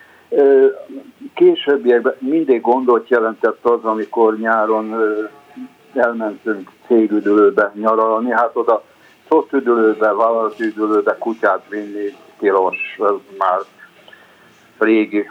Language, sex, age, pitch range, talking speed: Hungarian, male, 60-79, 105-120 Hz, 80 wpm